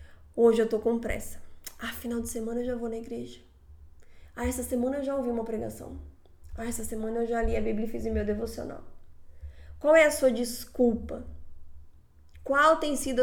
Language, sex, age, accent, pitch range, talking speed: Portuguese, female, 10-29, Brazilian, 215-265 Hz, 195 wpm